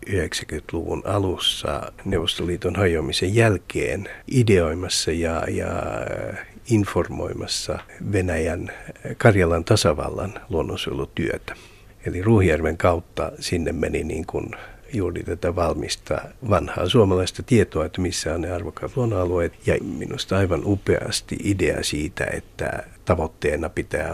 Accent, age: native, 60-79